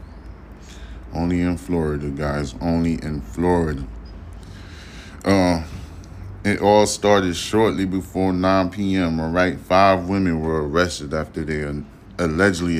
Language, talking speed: English, 115 wpm